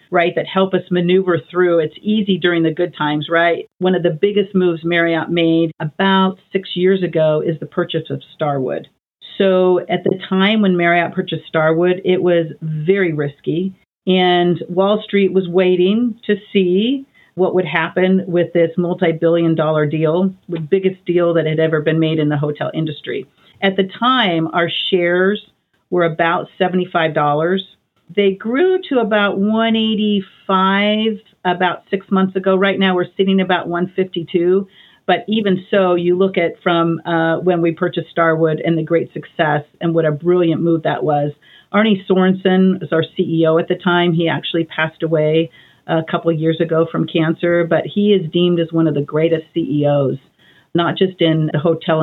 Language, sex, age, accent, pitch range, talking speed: English, female, 40-59, American, 165-190 Hz, 170 wpm